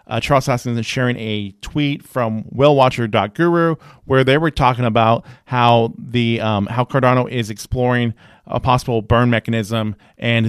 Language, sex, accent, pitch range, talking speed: English, male, American, 115-150 Hz, 150 wpm